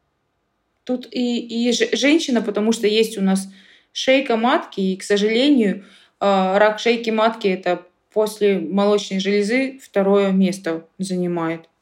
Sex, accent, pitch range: female, native, 185-225 Hz